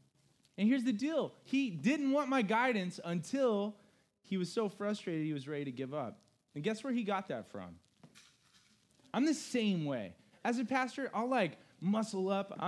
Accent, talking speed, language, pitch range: American, 180 wpm, English, 135-220 Hz